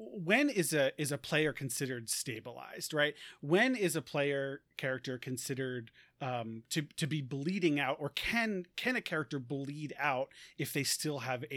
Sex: male